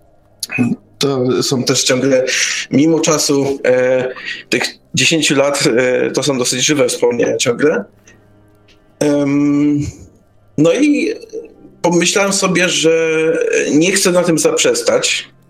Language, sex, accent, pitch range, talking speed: Polish, male, native, 125-210 Hz, 95 wpm